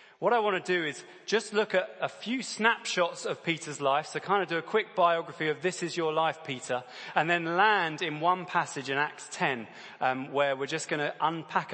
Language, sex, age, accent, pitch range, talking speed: English, male, 20-39, British, 135-180 Hz, 225 wpm